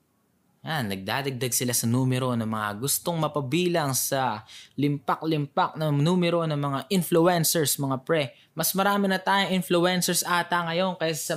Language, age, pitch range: Filipino, 20-39, 130-180 Hz